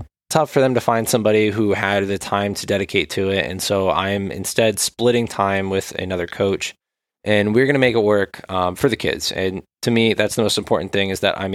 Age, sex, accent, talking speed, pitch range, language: 20-39, male, American, 230 wpm, 95-110 Hz, English